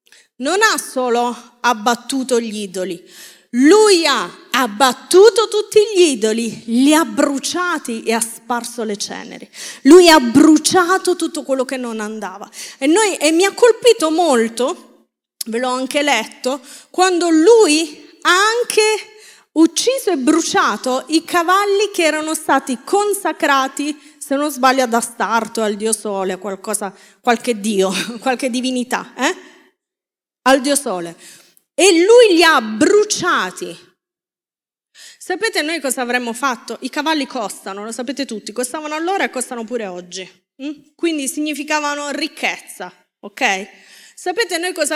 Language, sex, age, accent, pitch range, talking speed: Italian, female, 30-49, native, 230-330 Hz, 130 wpm